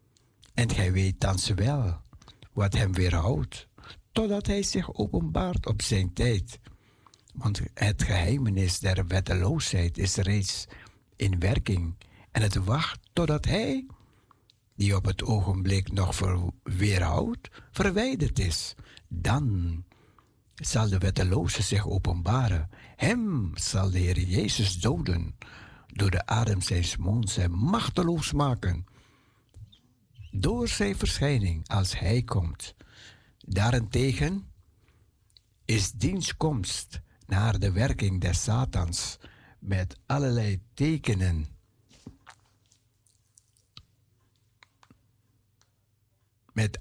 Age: 60-79